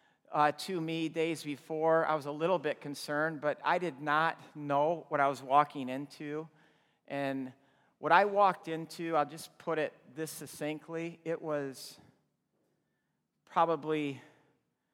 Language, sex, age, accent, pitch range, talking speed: English, male, 40-59, American, 145-185 Hz, 140 wpm